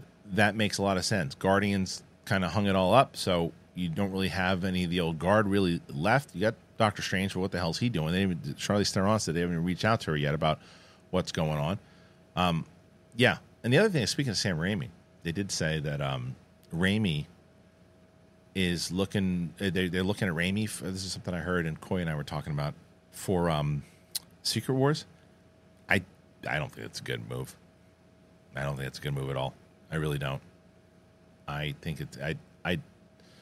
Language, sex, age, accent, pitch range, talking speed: English, male, 40-59, American, 85-105 Hz, 210 wpm